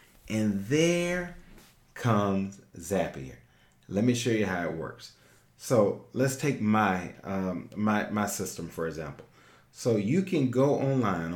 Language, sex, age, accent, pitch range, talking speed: English, male, 40-59, American, 105-145 Hz, 135 wpm